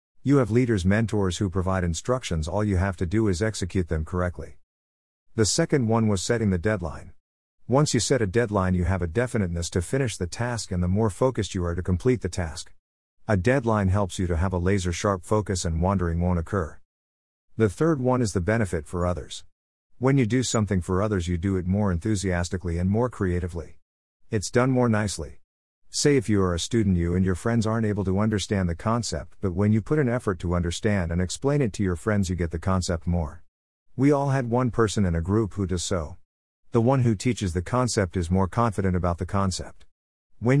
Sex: male